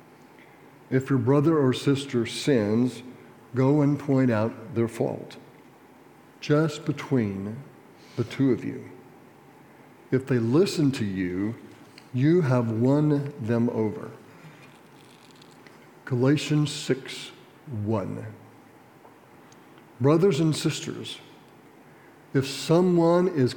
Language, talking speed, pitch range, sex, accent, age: English, 95 wpm, 125-155 Hz, male, American, 60-79